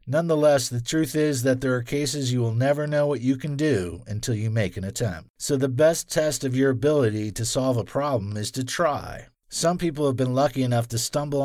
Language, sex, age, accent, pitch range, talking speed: Spanish, male, 50-69, American, 110-140 Hz, 225 wpm